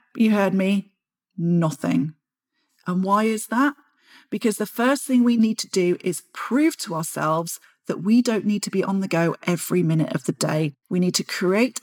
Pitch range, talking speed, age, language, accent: 175-230 Hz, 195 wpm, 40-59, English, British